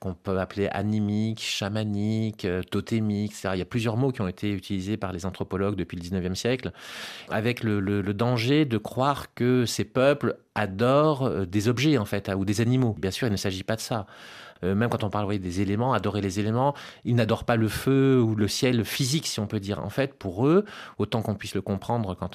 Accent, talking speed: French, 230 wpm